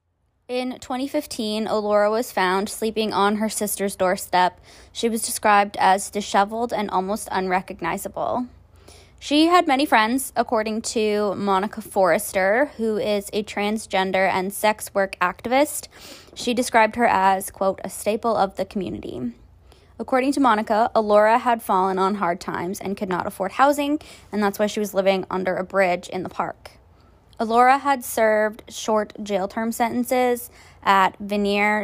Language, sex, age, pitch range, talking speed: English, female, 20-39, 190-230 Hz, 145 wpm